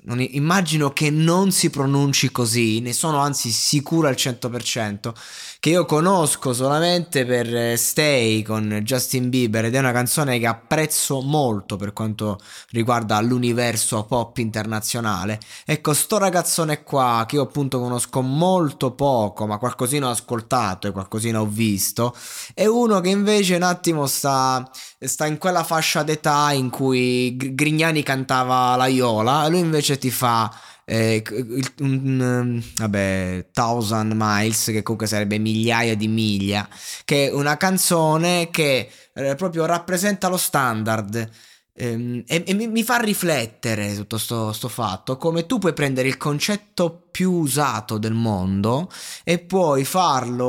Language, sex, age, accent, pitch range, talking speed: Italian, male, 20-39, native, 110-155 Hz, 145 wpm